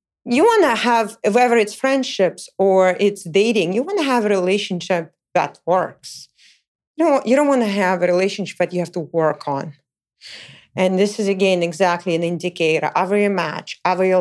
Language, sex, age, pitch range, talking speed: English, female, 40-59, 175-230 Hz, 185 wpm